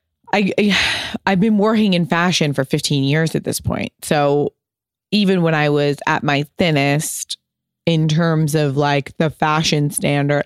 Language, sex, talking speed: English, female, 165 wpm